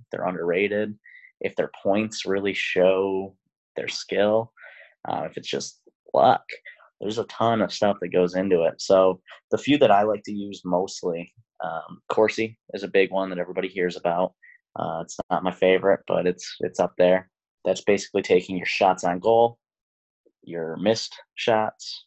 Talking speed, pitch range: 170 wpm, 90-115 Hz